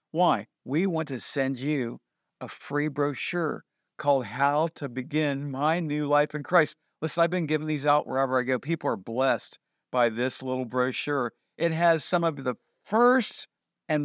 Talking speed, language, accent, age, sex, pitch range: 175 wpm, English, American, 50-69, male, 140-185 Hz